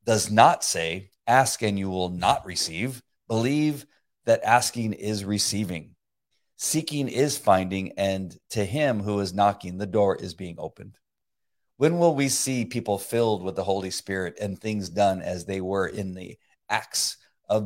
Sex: male